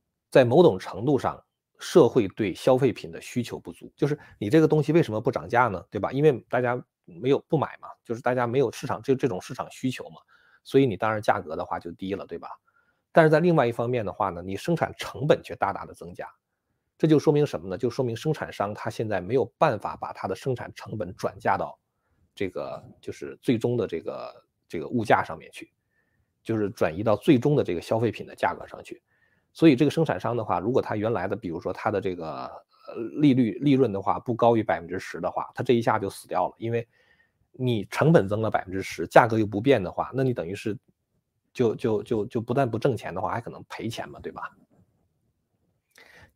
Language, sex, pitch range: Chinese, male, 105-140 Hz